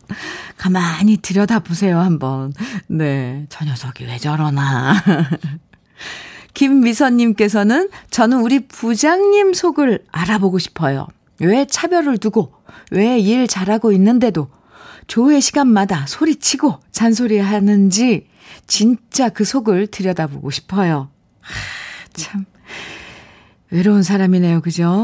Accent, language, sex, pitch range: native, Korean, female, 165-230 Hz